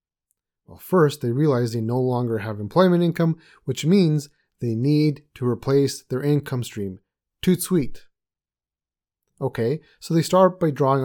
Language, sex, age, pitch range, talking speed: English, male, 30-49, 110-150 Hz, 145 wpm